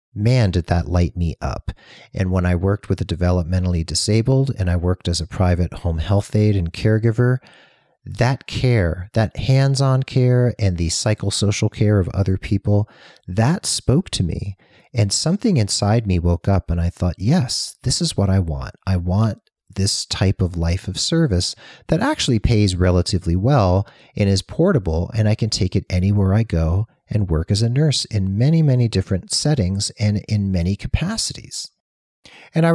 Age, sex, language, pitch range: 40-59, male, English, 90-125 Hz